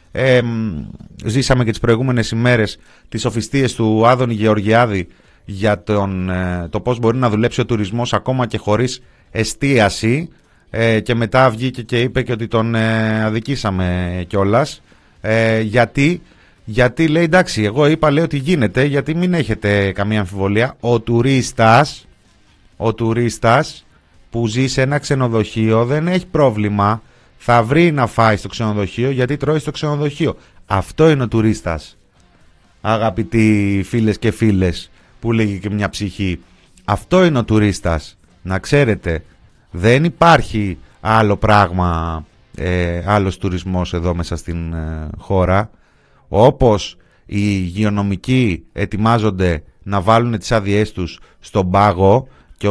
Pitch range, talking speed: 95-120 Hz, 130 wpm